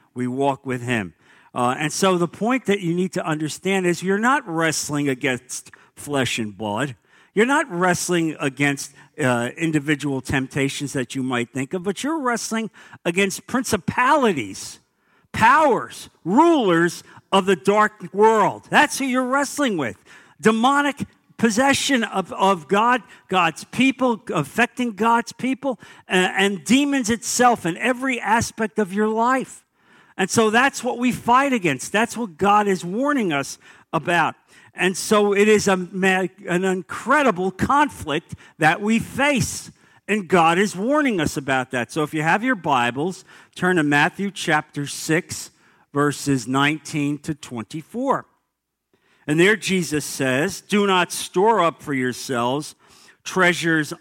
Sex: male